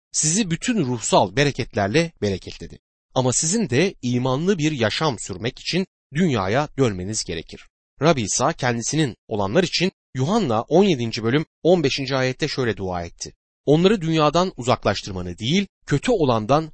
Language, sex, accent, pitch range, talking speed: Turkish, male, native, 110-170 Hz, 125 wpm